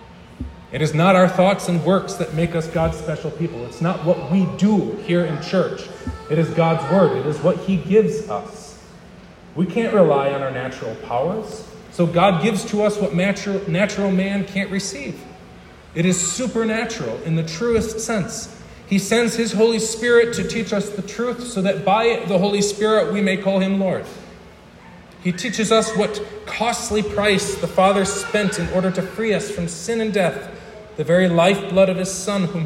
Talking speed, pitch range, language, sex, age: 185 wpm, 170-205 Hz, English, male, 40-59